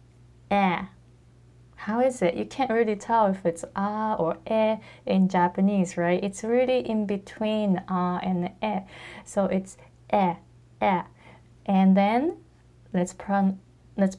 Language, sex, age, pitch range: Japanese, female, 20-39, 160-210 Hz